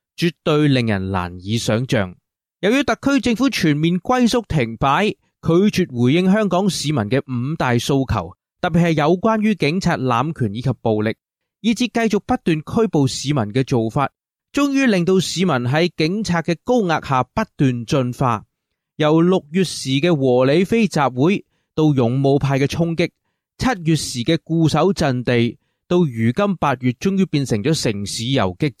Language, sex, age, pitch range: English, male, 20-39, 125-175 Hz